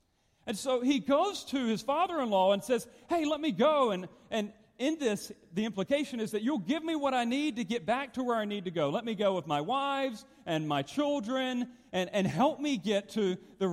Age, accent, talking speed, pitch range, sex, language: 40-59, American, 225 wpm, 150-245 Hz, male, English